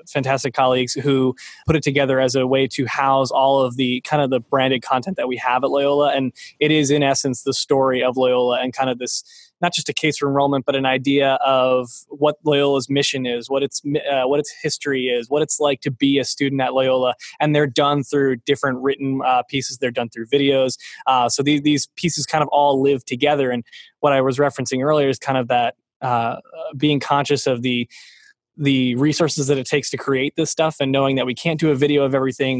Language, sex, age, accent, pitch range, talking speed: English, male, 20-39, American, 125-145 Hz, 225 wpm